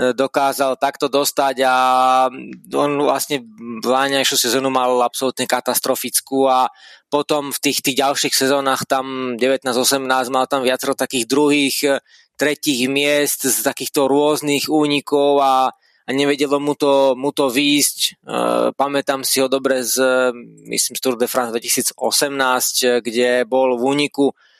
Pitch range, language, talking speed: 125-140 Hz, Slovak, 130 wpm